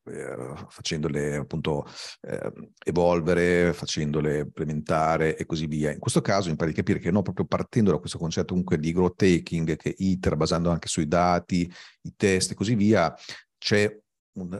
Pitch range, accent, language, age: 85-105 Hz, native, Italian, 40-59